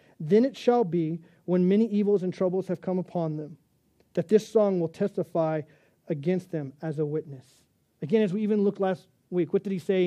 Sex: male